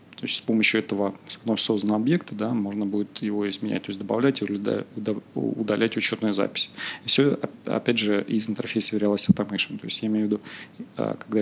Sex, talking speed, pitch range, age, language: male, 185 wpm, 105-120 Hz, 30-49, Russian